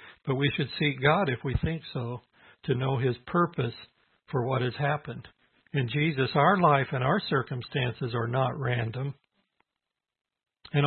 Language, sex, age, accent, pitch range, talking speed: English, male, 60-79, American, 130-150 Hz, 155 wpm